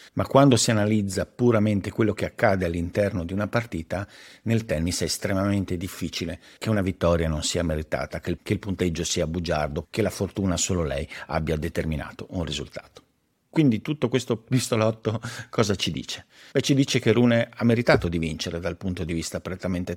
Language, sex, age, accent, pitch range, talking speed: Italian, male, 50-69, native, 90-115 Hz, 175 wpm